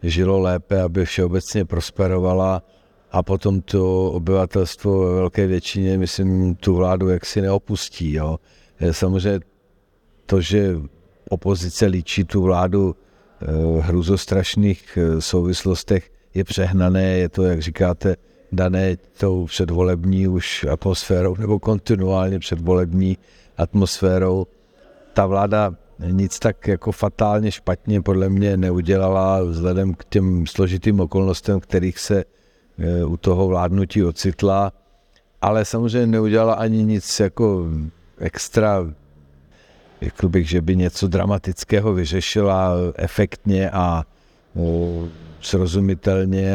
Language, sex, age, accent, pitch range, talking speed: Czech, male, 50-69, native, 90-100 Hz, 105 wpm